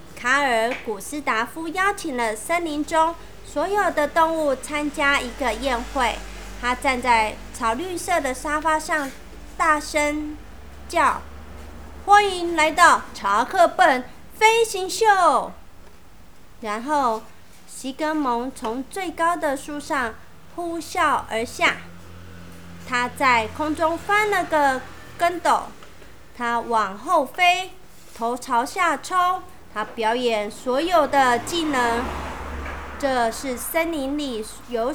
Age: 30-49